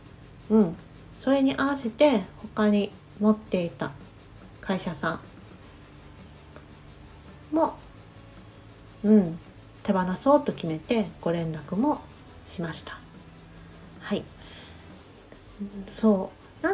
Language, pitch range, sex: Japanese, 155-220 Hz, female